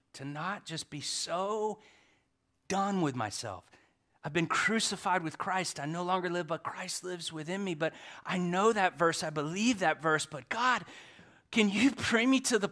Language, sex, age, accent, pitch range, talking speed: English, male, 40-59, American, 185-260 Hz, 185 wpm